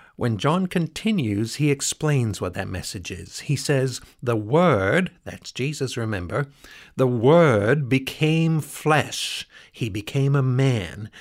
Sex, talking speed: male, 130 wpm